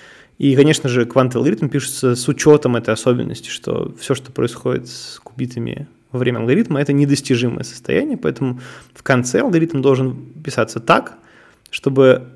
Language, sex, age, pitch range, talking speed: Russian, male, 20-39, 120-140 Hz, 145 wpm